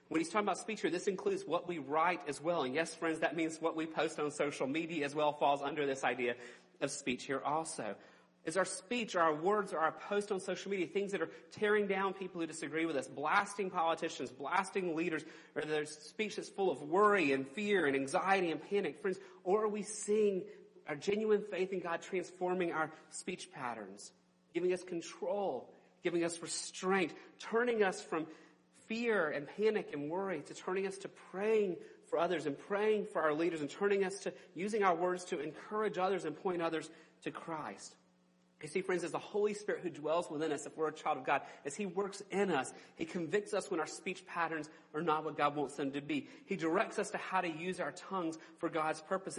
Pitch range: 155-200 Hz